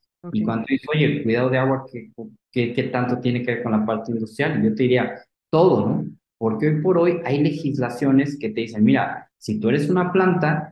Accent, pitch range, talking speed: Mexican, 110-140 Hz, 215 wpm